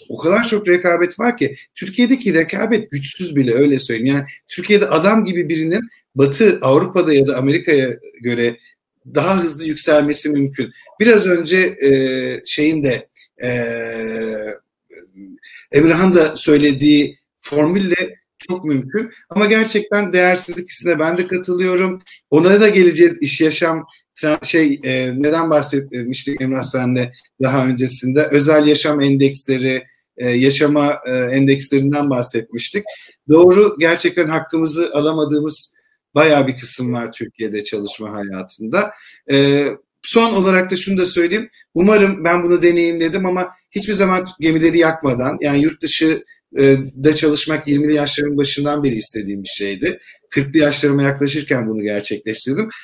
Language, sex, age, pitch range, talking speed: Turkish, male, 50-69, 130-180 Hz, 120 wpm